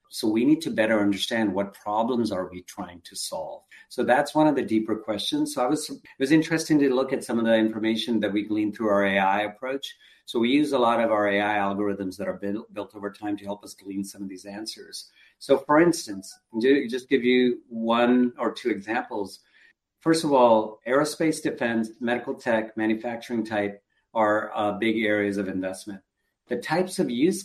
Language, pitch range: English, 105-135 Hz